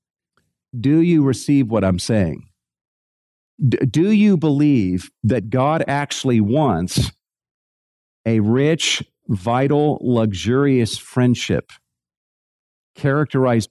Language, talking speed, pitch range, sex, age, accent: English, 85 wpm, 105-140 Hz, male, 50-69, American